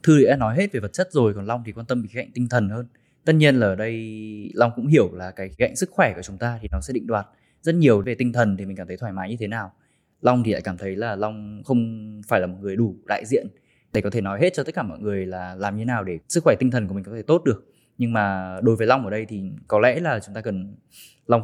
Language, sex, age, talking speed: Vietnamese, male, 20-39, 310 wpm